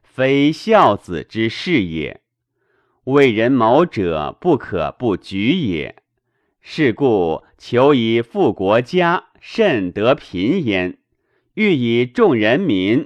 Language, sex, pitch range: Chinese, male, 105-150 Hz